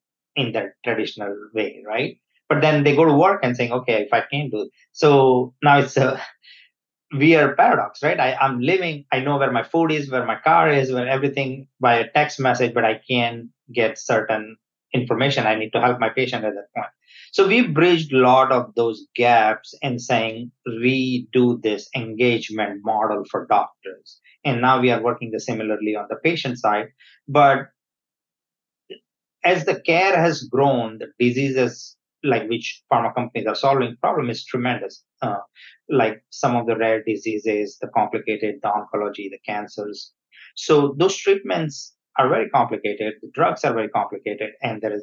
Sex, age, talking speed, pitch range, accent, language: male, 30-49, 175 wpm, 110-135 Hz, Indian, English